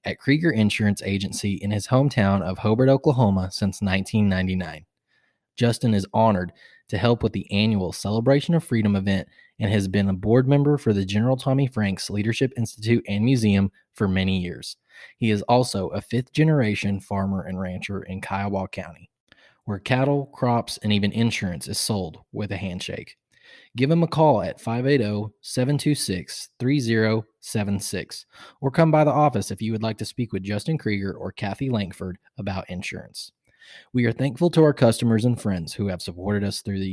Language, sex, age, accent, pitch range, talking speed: English, male, 20-39, American, 100-125 Hz, 170 wpm